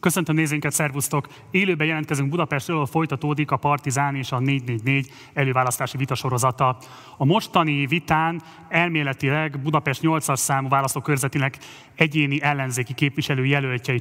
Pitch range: 130-155 Hz